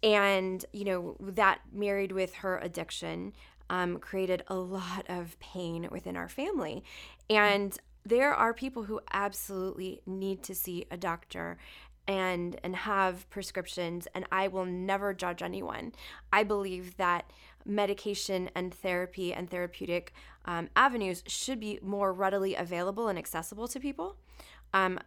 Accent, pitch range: American, 175-205 Hz